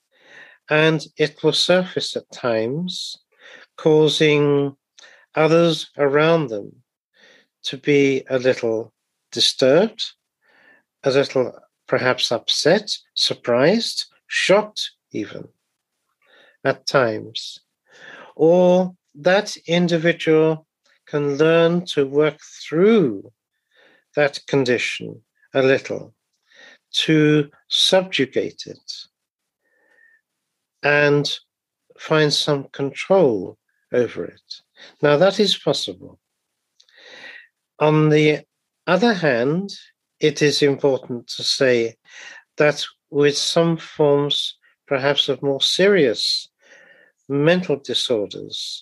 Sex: male